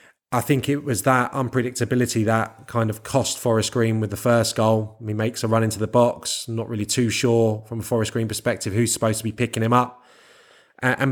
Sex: male